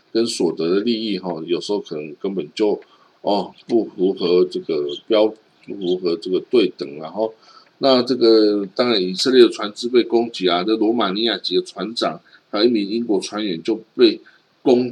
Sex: male